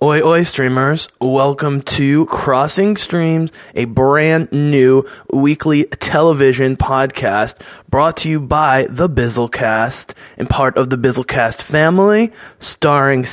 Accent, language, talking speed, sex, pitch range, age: American, English, 115 wpm, male, 130-160 Hz, 20-39